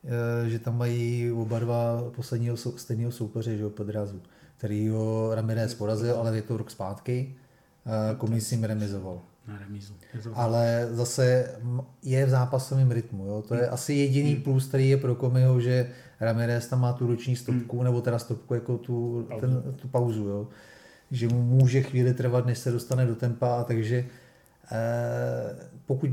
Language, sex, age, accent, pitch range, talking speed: Czech, male, 30-49, native, 115-130 Hz, 160 wpm